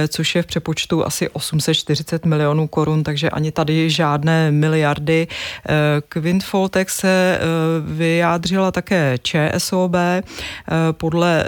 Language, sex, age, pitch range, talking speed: Czech, female, 30-49, 155-170 Hz, 100 wpm